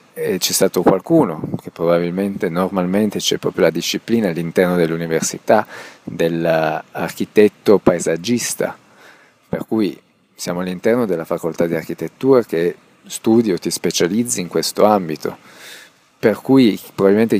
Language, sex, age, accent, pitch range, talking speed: Italian, male, 40-59, native, 85-110 Hz, 115 wpm